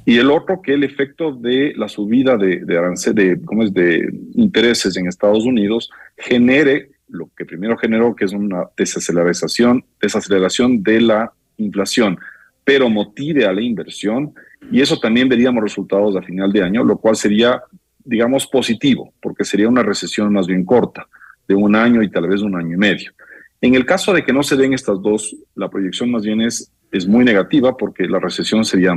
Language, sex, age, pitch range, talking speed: Spanish, male, 40-59, 100-130 Hz, 180 wpm